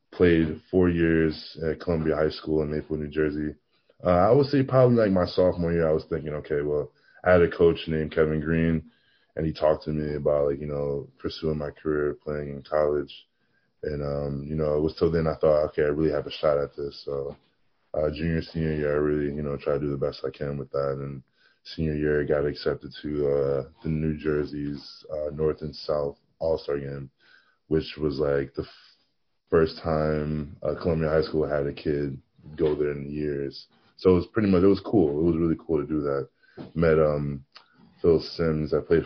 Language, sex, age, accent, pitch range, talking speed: English, male, 20-39, American, 70-80 Hz, 215 wpm